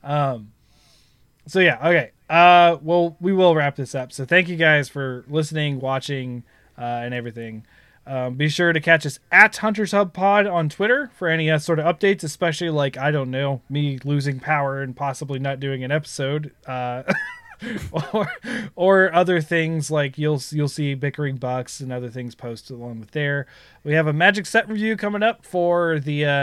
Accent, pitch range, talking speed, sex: American, 135-175 Hz, 185 wpm, male